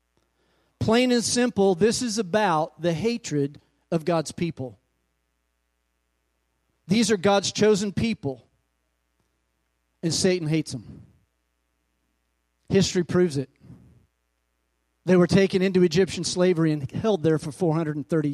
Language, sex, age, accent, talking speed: English, male, 40-59, American, 110 wpm